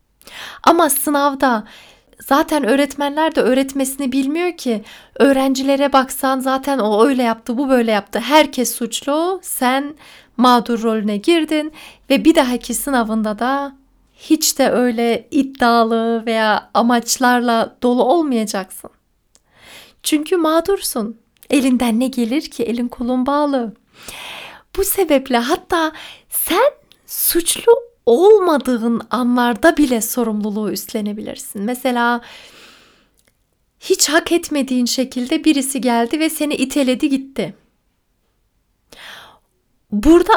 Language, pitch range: Turkish, 235-310 Hz